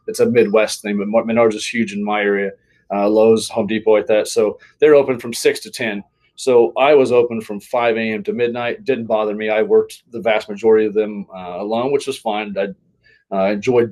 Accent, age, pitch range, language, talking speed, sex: American, 30-49, 110-125 Hz, English, 215 wpm, male